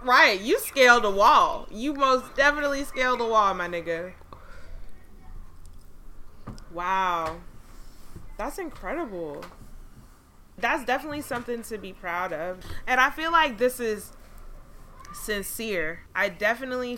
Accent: American